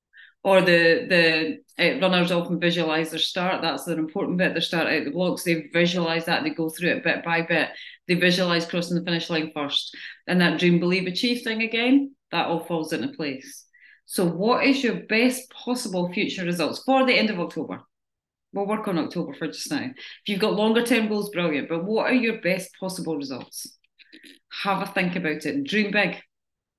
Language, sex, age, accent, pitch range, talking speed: English, female, 30-49, British, 170-225 Hz, 195 wpm